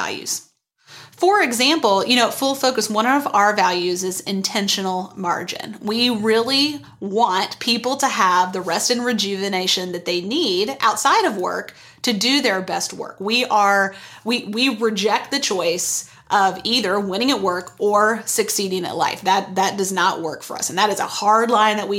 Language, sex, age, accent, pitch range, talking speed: English, female, 30-49, American, 195-250 Hz, 175 wpm